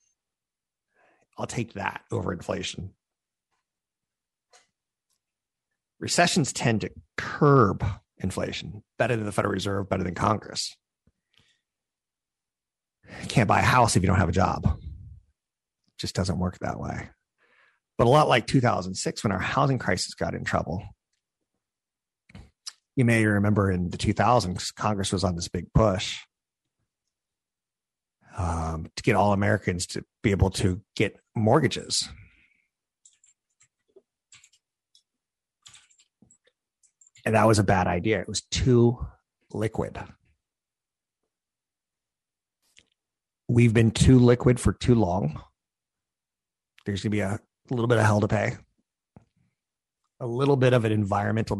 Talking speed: 120 wpm